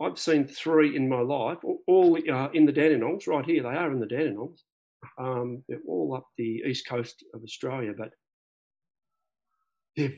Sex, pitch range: male, 130-200 Hz